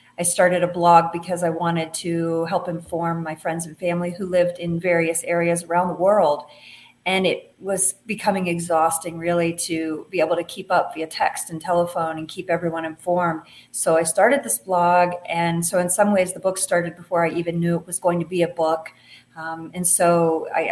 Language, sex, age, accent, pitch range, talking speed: English, female, 30-49, American, 170-195 Hz, 205 wpm